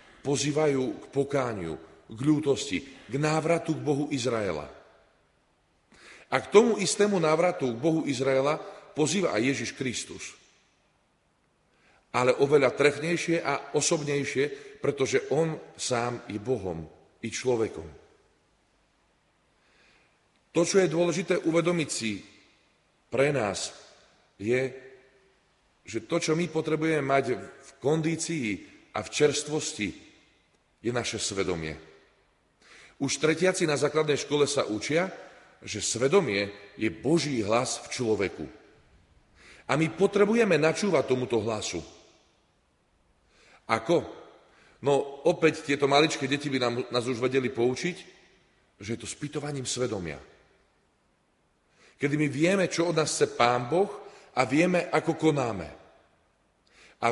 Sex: male